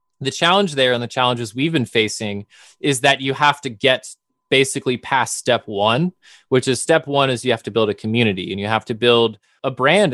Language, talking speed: English, 220 wpm